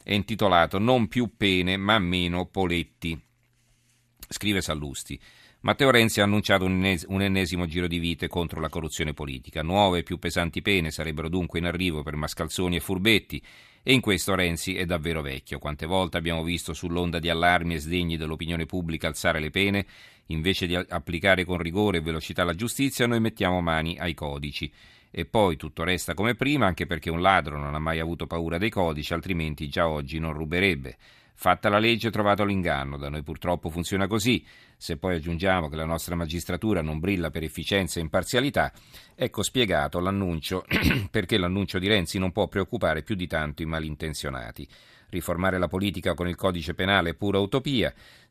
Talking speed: 175 wpm